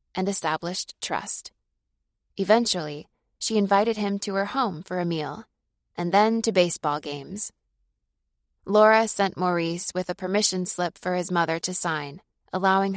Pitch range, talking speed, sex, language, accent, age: 160-195 Hz, 145 wpm, female, English, American, 20-39